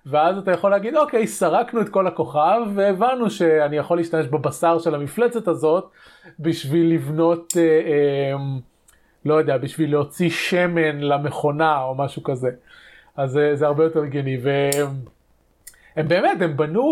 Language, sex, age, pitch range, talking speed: Hebrew, male, 30-49, 145-185 Hz, 145 wpm